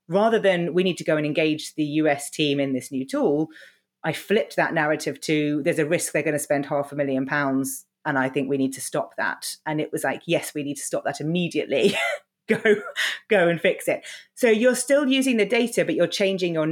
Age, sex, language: 30-49, female, English